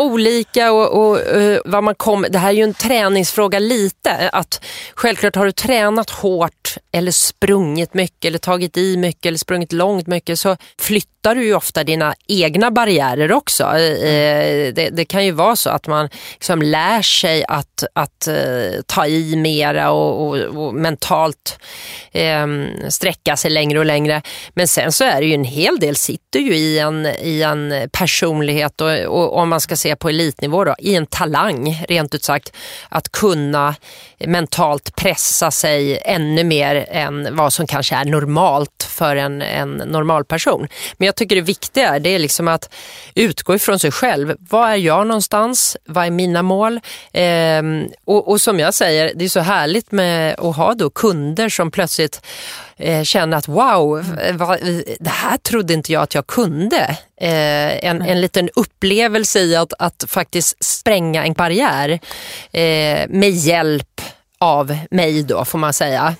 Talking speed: 165 wpm